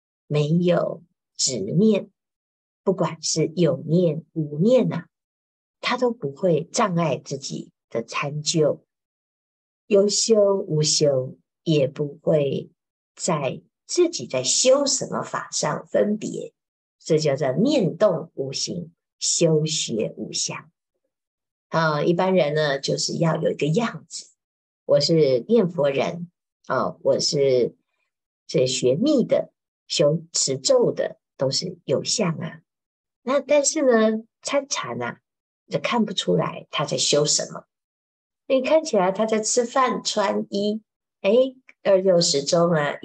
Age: 50-69